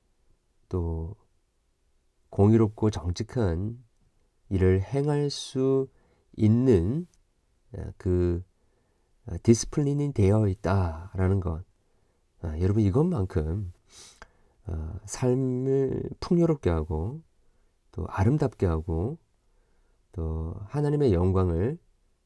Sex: male